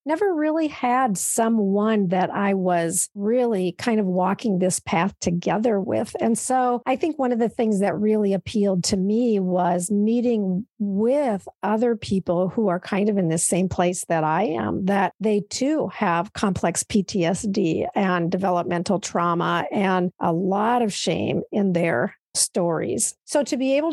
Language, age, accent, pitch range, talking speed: English, 50-69, American, 185-230 Hz, 165 wpm